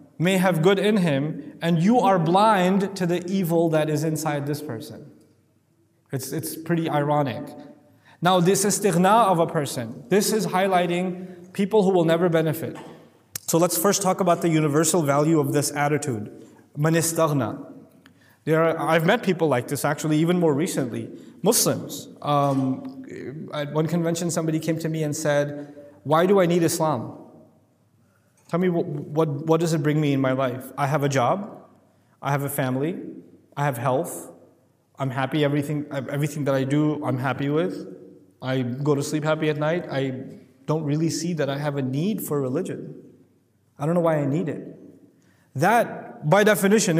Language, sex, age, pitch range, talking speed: English, male, 20-39, 140-180 Hz, 175 wpm